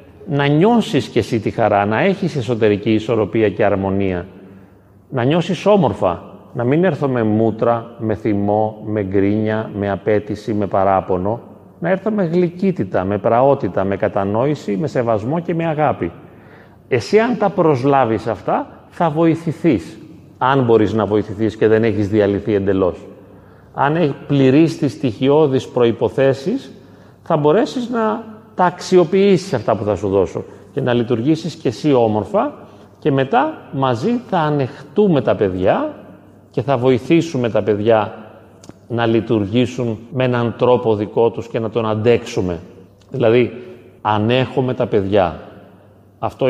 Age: 40-59